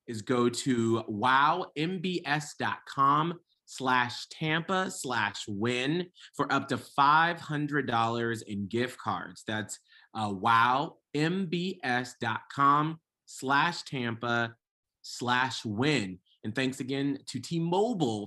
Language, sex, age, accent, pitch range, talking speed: English, male, 30-49, American, 115-150 Hz, 90 wpm